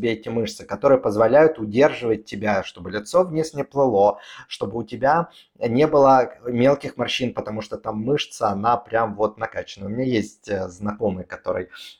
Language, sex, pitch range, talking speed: Russian, male, 105-135 Hz, 155 wpm